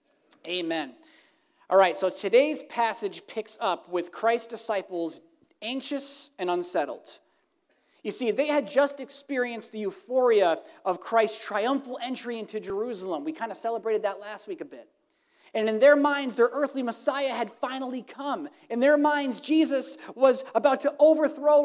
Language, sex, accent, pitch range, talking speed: English, male, American, 215-300 Hz, 150 wpm